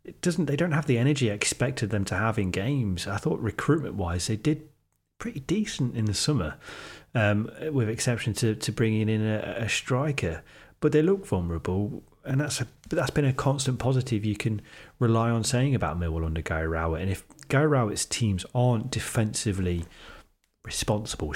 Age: 30-49